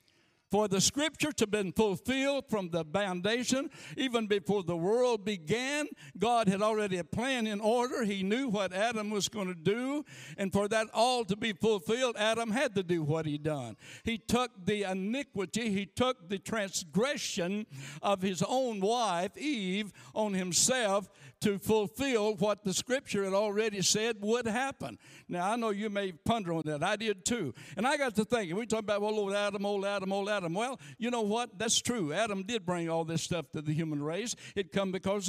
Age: 60-79